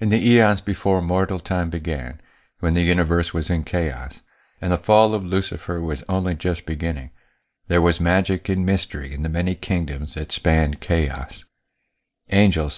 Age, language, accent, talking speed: 50-69, English, American, 165 wpm